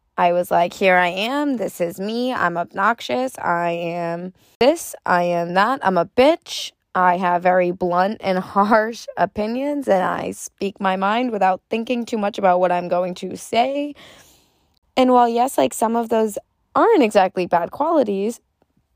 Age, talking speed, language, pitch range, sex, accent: 20-39, 170 wpm, English, 175-210 Hz, female, American